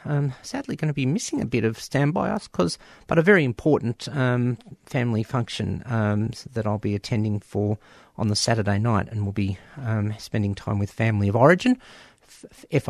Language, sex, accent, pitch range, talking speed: English, male, Australian, 115-165 Hz, 185 wpm